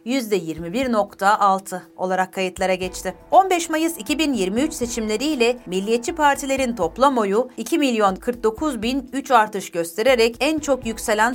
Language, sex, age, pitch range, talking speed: Turkish, female, 40-59, 195-260 Hz, 115 wpm